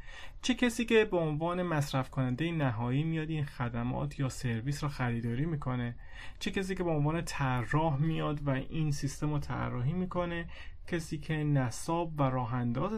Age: 30-49